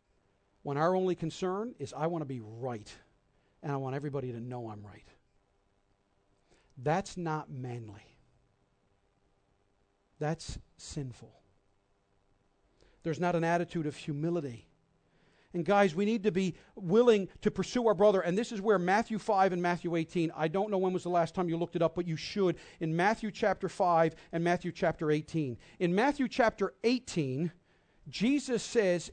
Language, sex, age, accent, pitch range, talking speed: English, male, 40-59, American, 150-200 Hz, 160 wpm